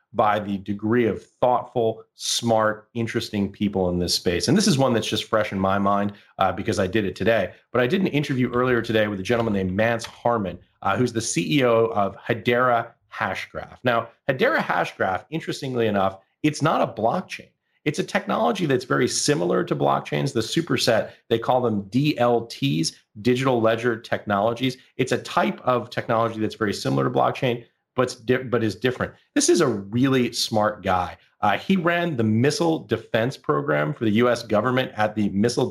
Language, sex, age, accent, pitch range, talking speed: English, male, 30-49, American, 105-125 Hz, 180 wpm